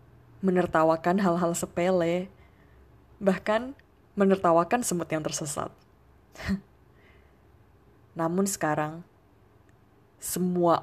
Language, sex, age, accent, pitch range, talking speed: Indonesian, female, 20-39, native, 150-190 Hz, 60 wpm